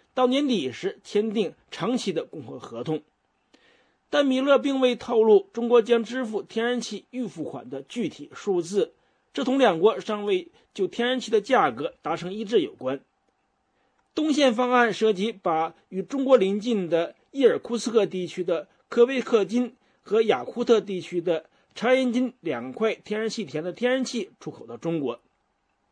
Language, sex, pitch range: English, male, 185-250 Hz